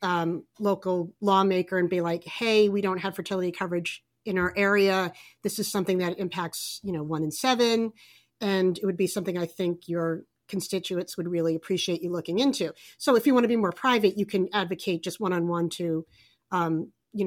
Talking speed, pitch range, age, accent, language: 200 wpm, 175-205 Hz, 40-59, American, English